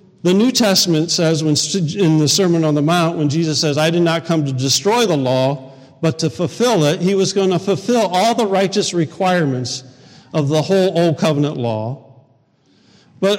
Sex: male